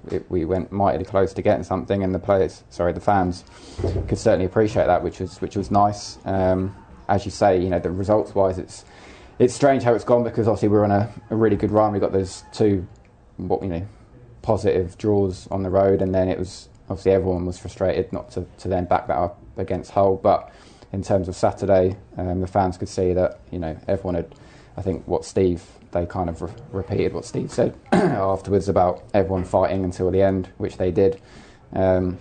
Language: English